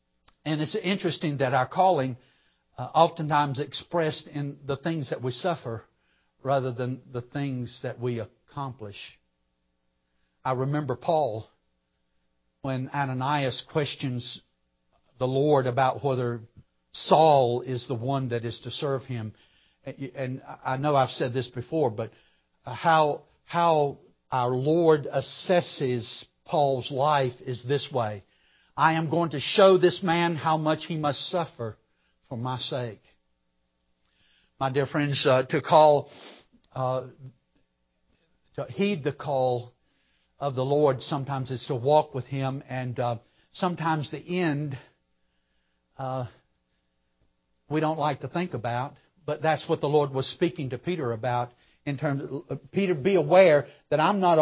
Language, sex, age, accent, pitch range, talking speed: English, male, 60-79, American, 120-150 Hz, 140 wpm